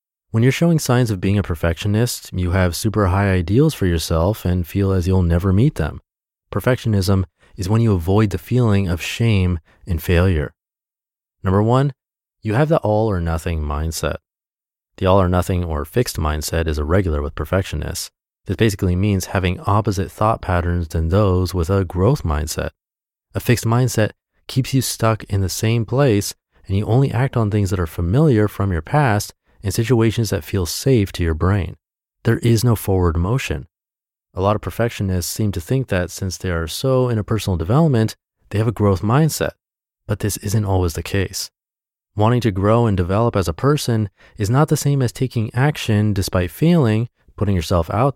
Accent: American